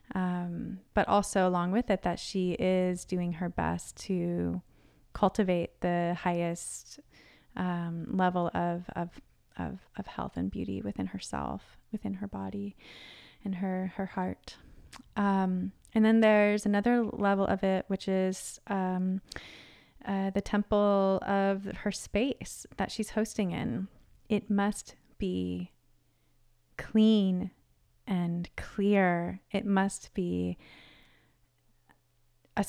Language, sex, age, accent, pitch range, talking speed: English, female, 20-39, American, 175-200 Hz, 120 wpm